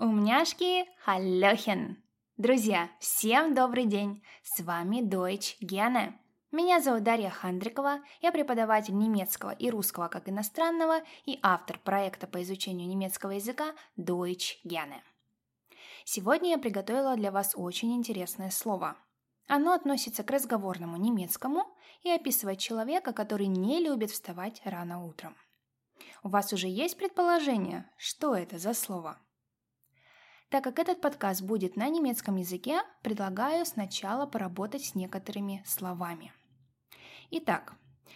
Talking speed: 115 wpm